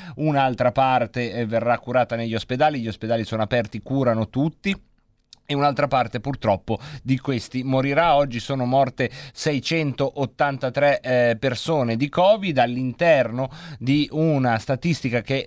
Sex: male